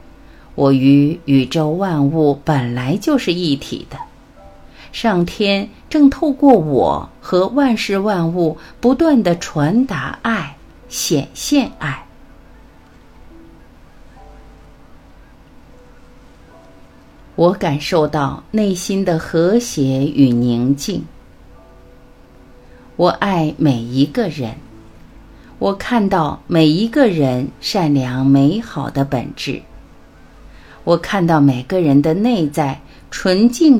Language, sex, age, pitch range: Chinese, female, 50-69, 135-215 Hz